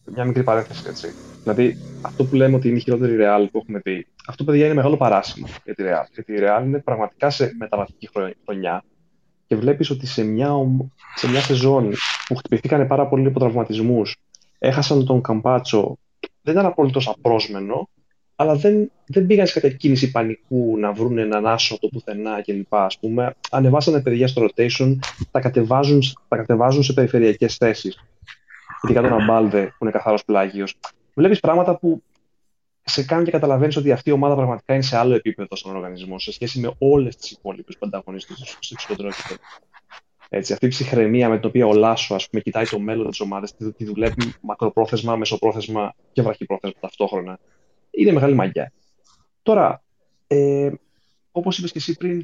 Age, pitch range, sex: 20-39, 110-140 Hz, male